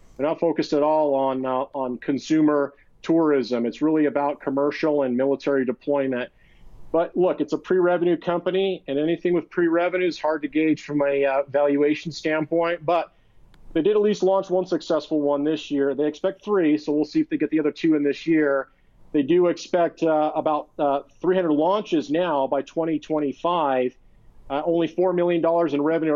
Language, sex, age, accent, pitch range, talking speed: English, male, 40-59, American, 140-165 Hz, 180 wpm